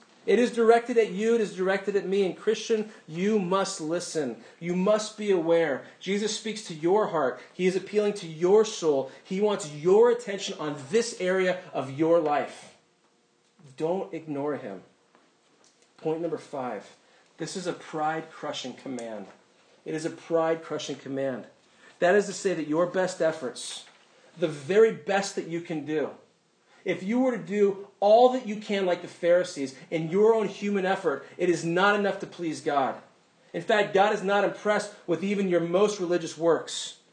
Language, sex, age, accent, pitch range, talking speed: English, male, 40-59, American, 165-205 Hz, 175 wpm